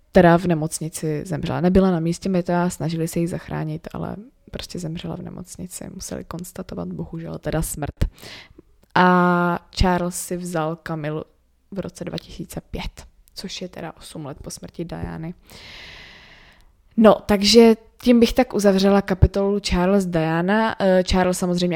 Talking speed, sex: 140 wpm, female